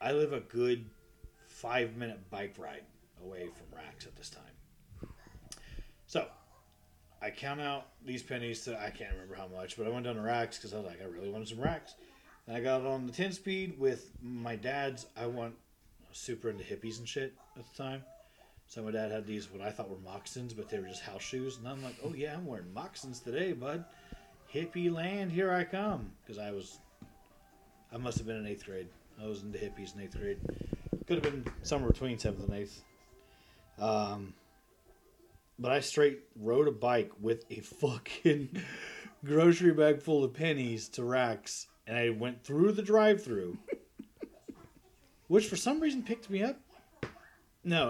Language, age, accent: English, 30-49, American